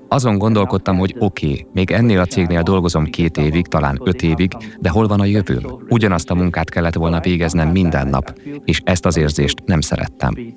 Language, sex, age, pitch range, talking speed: Hungarian, male, 30-49, 80-100 Hz, 185 wpm